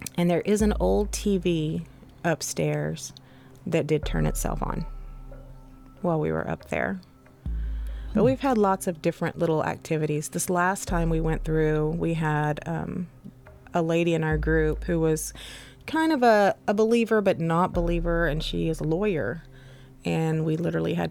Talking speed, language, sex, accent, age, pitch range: 165 wpm, English, female, American, 30-49, 135-170 Hz